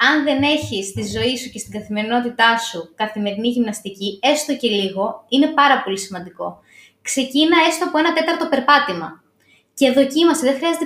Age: 20-39